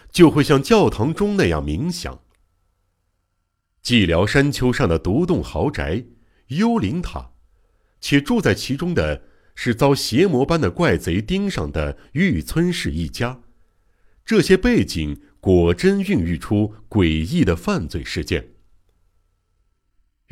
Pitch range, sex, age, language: 85-140 Hz, male, 60-79, Chinese